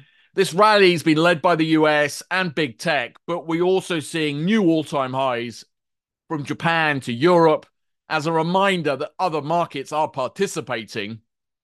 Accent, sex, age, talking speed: British, male, 30-49, 155 wpm